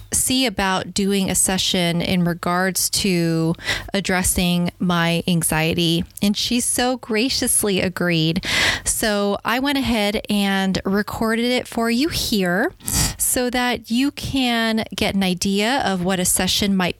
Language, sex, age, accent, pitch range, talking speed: English, female, 20-39, American, 185-210 Hz, 135 wpm